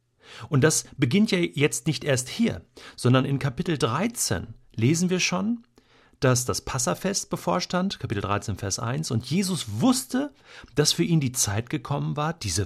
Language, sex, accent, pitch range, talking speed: German, male, German, 115-155 Hz, 160 wpm